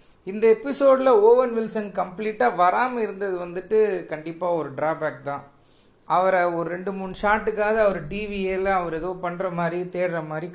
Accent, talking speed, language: native, 140 wpm, Tamil